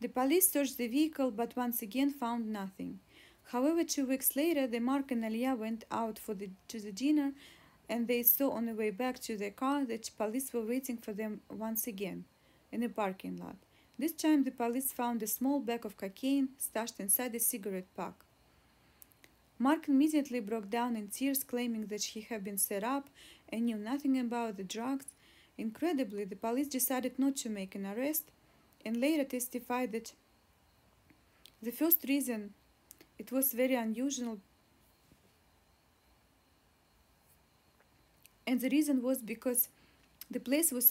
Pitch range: 225-270 Hz